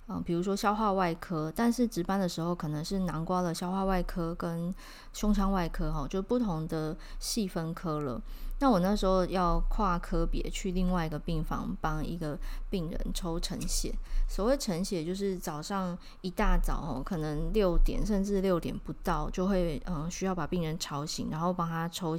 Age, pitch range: 20-39, 165-200 Hz